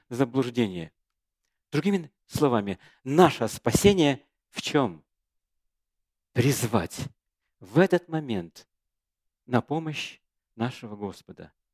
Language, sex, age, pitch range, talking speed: Russian, male, 40-59, 100-165 Hz, 75 wpm